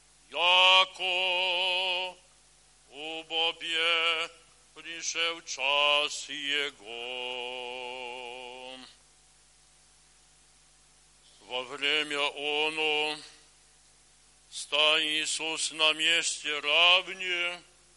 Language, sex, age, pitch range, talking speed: Polish, male, 60-79, 165-195 Hz, 45 wpm